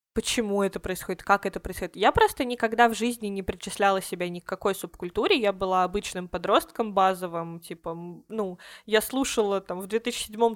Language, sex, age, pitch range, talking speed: Russian, female, 20-39, 180-215 Hz, 170 wpm